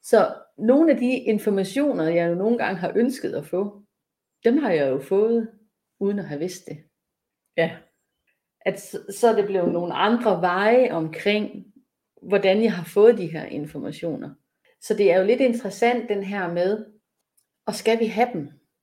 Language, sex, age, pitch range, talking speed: Danish, female, 30-49, 175-215 Hz, 170 wpm